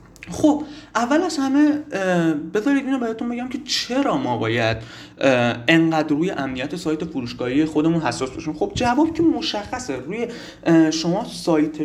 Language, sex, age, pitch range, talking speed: Persian, male, 30-49, 145-235 Hz, 140 wpm